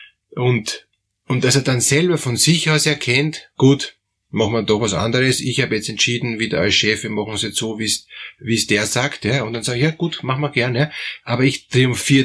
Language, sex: German, male